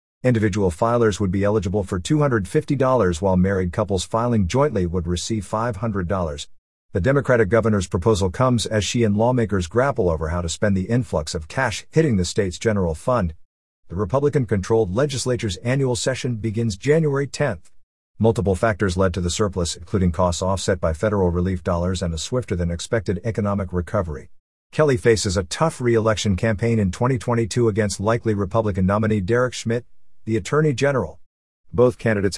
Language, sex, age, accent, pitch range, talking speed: English, male, 50-69, American, 95-115 Hz, 155 wpm